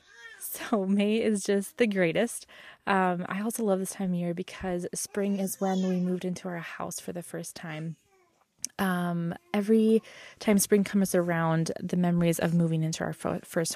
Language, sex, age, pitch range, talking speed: English, female, 20-39, 175-205 Hz, 175 wpm